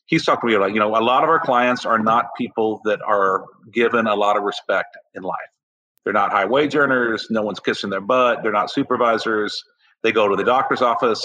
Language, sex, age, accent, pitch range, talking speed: English, male, 40-59, American, 100-120 Hz, 225 wpm